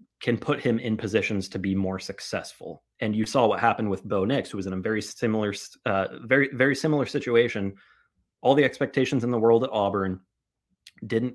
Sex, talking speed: male, 195 wpm